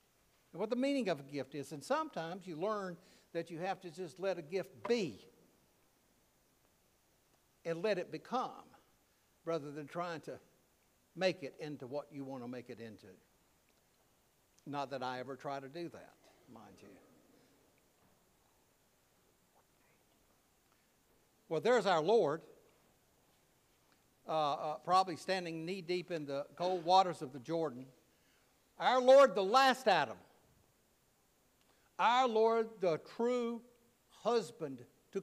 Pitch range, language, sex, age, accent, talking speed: 145-200 Hz, English, male, 60-79, American, 130 wpm